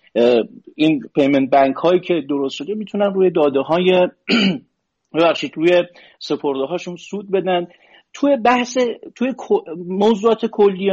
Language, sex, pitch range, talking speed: Persian, male, 160-215 Hz, 120 wpm